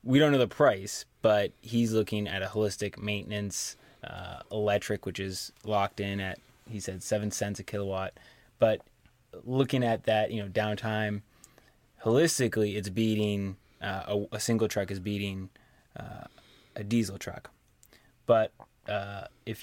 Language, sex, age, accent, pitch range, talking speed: English, male, 20-39, American, 100-115 Hz, 150 wpm